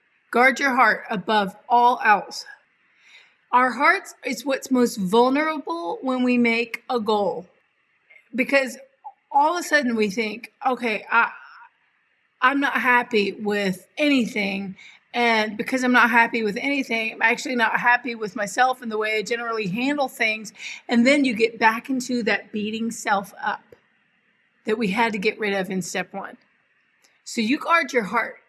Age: 30-49